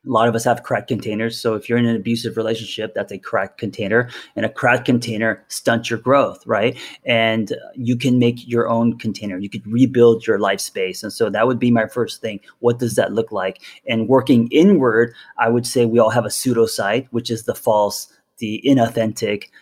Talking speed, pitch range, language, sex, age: 210 wpm, 110-125 Hz, English, male, 30-49